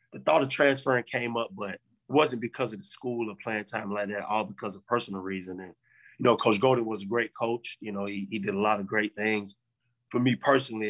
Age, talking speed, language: 20-39, 250 wpm, English